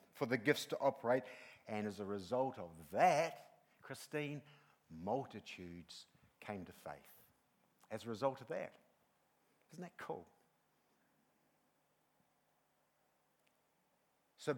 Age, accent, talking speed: 50-69, Australian, 105 wpm